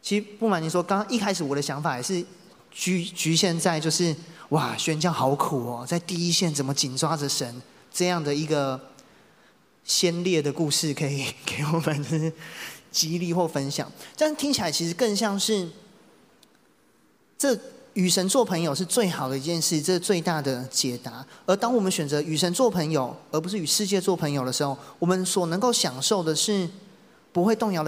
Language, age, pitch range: Chinese, 30-49, 140-190 Hz